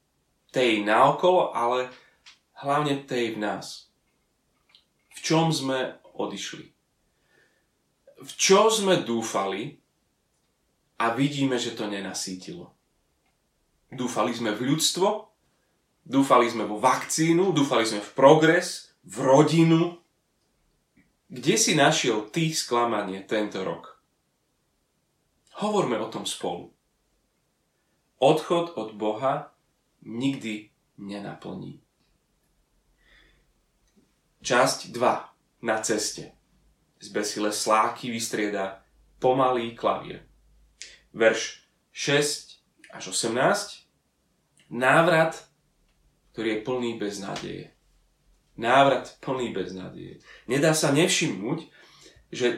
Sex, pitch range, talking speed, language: male, 110-155 Hz, 90 wpm, Slovak